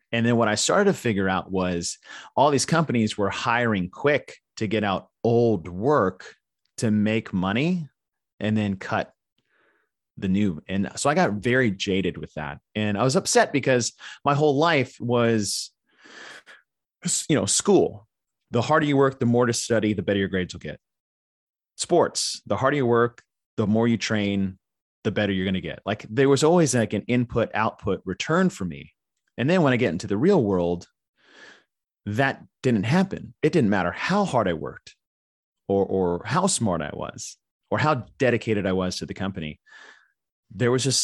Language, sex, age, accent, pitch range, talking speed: English, male, 30-49, American, 95-125 Hz, 180 wpm